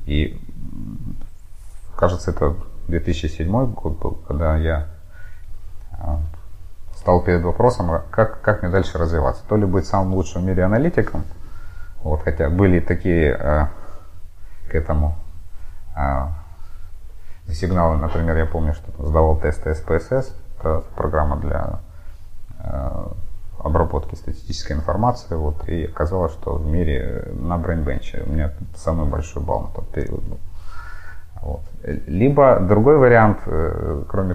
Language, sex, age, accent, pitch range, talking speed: Russian, male, 30-49, native, 80-95 Hz, 120 wpm